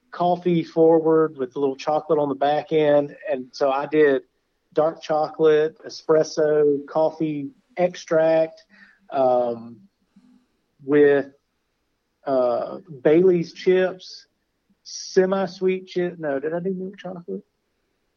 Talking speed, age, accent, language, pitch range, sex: 105 wpm, 40-59, American, English, 140-180 Hz, male